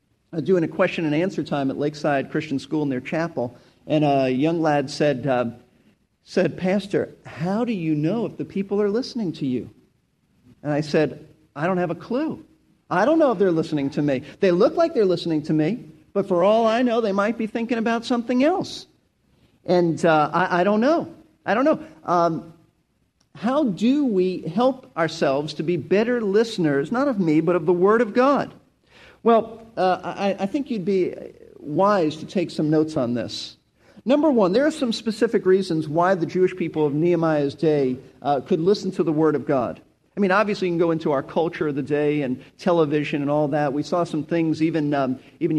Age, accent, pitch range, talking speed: 50-69, American, 150-200 Hz, 205 wpm